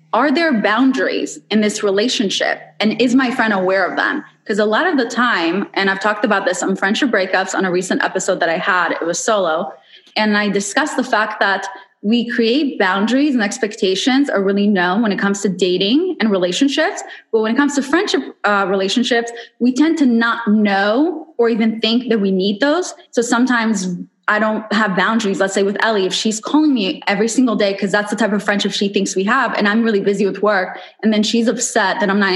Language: English